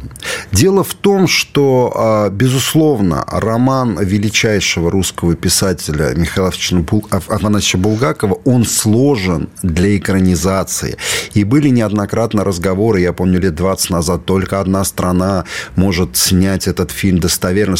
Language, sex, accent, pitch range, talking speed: Russian, male, native, 90-120 Hz, 110 wpm